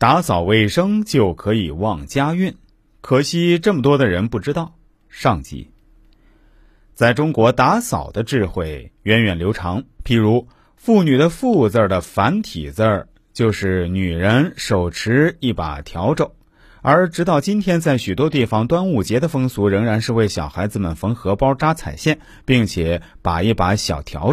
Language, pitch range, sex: Chinese, 100-155 Hz, male